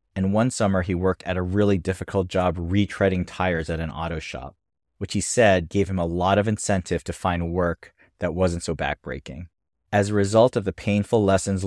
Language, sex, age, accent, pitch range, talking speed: English, male, 30-49, American, 85-100 Hz, 200 wpm